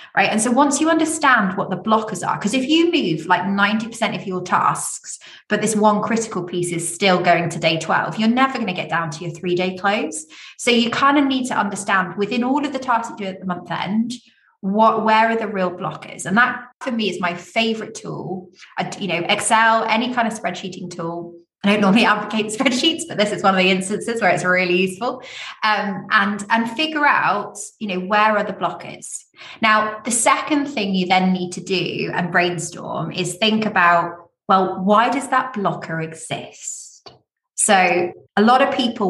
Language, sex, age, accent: English, female, 20-39, British